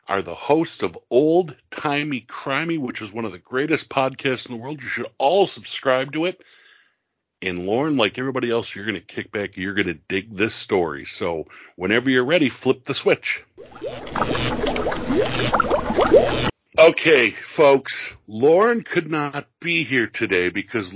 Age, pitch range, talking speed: 60-79, 115-160 Hz, 155 wpm